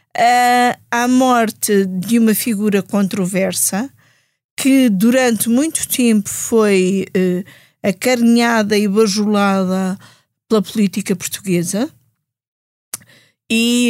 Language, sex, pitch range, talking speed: Portuguese, female, 200-235 Hz, 80 wpm